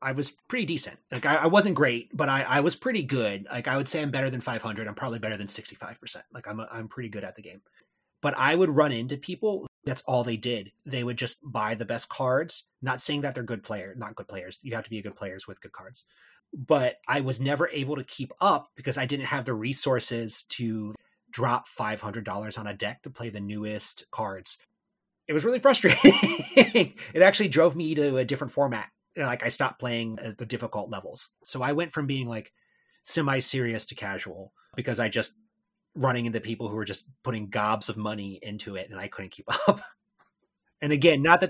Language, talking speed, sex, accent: English, 220 wpm, male, American